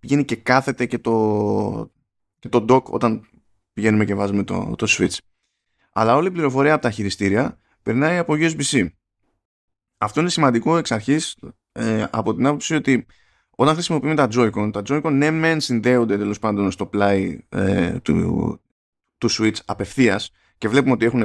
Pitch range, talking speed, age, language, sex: 110-155 Hz, 165 wpm, 20-39, Greek, male